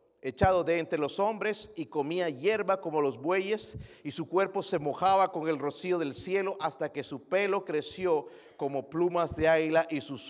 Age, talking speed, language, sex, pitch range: 50-69, 185 wpm, Spanish, male, 150-185 Hz